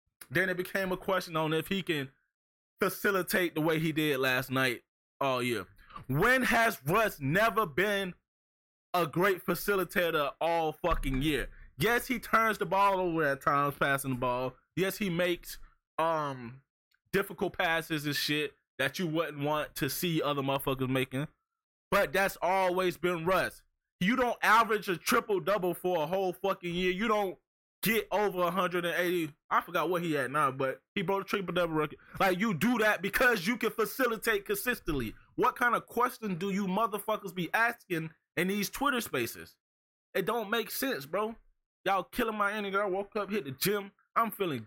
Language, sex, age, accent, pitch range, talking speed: English, male, 20-39, American, 150-200 Hz, 175 wpm